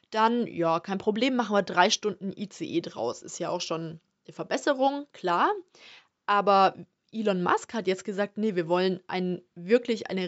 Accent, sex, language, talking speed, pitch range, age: German, female, German, 165 wpm, 185-235 Hz, 20-39